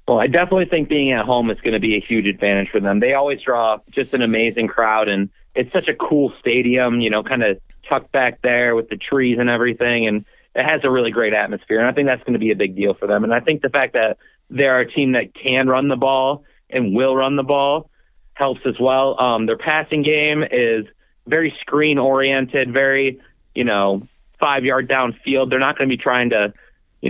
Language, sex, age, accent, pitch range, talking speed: English, male, 30-49, American, 115-135 Hz, 225 wpm